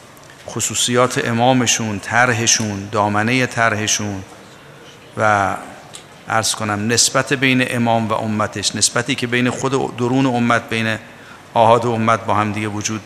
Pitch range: 110-135 Hz